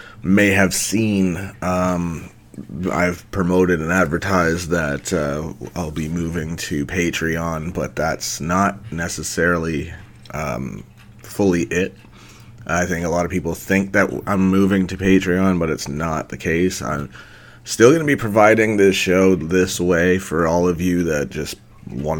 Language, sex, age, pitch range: English, male, 30-49, 80-95 Hz